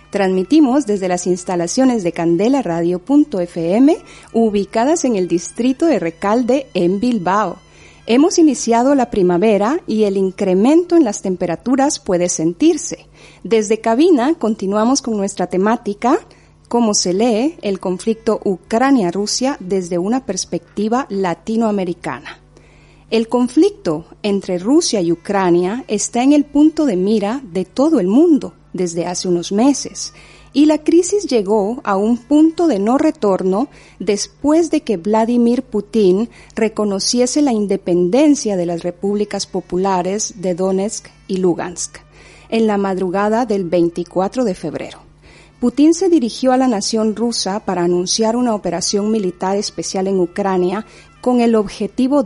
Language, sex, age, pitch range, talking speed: Spanish, female, 40-59, 185-255 Hz, 130 wpm